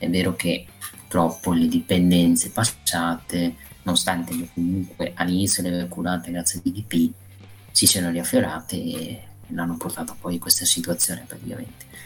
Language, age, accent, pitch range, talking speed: Italian, 30-49, native, 85-105 Hz, 145 wpm